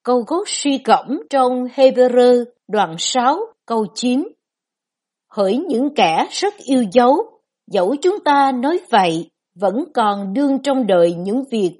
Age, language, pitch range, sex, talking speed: 60-79, Vietnamese, 195-265 Hz, female, 140 wpm